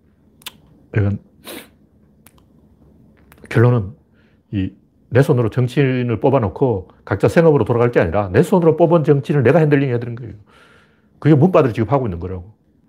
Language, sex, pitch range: Korean, male, 110-160 Hz